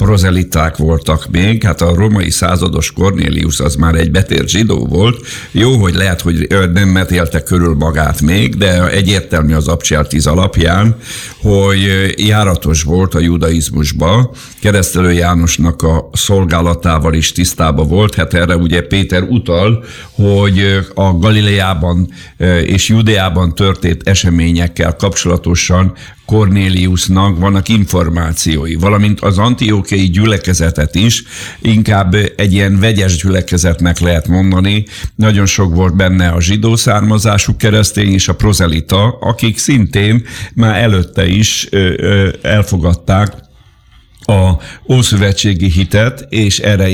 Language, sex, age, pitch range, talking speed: Hungarian, male, 50-69, 85-105 Hz, 115 wpm